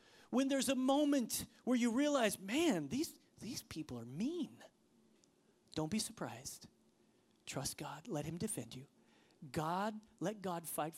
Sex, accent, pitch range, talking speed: male, American, 145-205 Hz, 140 wpm